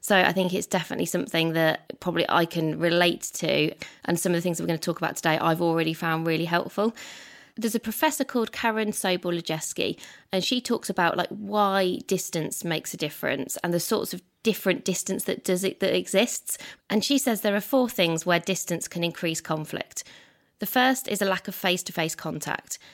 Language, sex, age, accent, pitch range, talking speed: English, female, 20-39, British, 160-195 Hz, 200 wpm